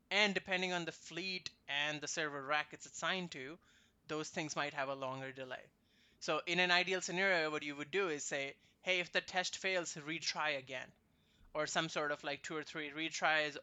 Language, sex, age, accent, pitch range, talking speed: English, male, 20-39, Indian, 145-180 Hz, 205 wpm